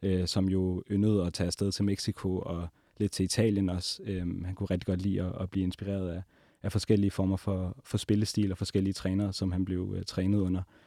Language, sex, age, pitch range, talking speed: Danish, male, 30-49, 95-110 Hz, 220 wpm